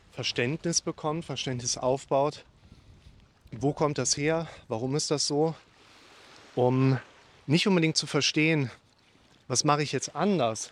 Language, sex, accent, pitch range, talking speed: German, male, German, 115-150 Hz, 125 wpm